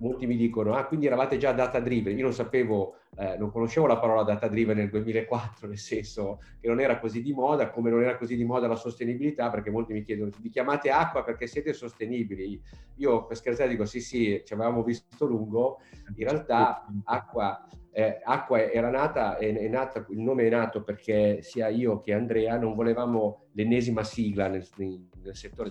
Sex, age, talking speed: male, 40-59, 195 wpm